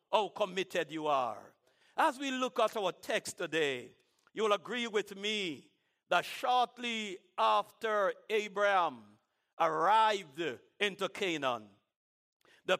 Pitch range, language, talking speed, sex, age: 205-270 Hz, English, 110 wpm, male, 60-79